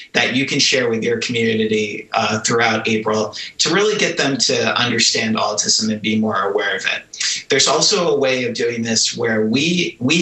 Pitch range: 110-130 Hz